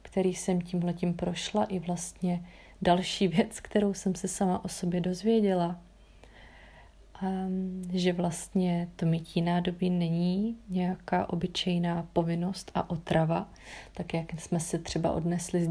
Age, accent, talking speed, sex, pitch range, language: 30-49, native, 130 wpm, female, 165-185 Hz, Czech